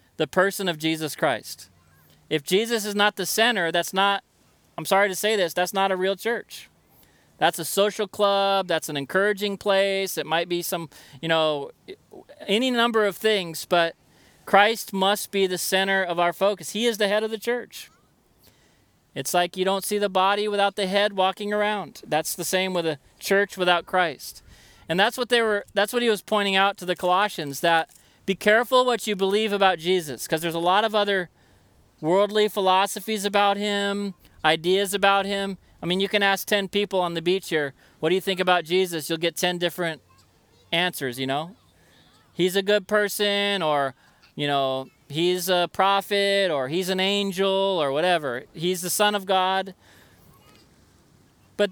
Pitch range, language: 170-205 Hz, English